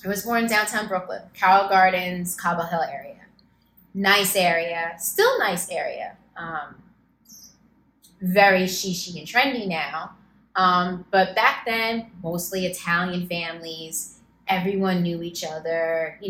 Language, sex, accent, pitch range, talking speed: English, female, American, 185-250 Hz, 125 wpm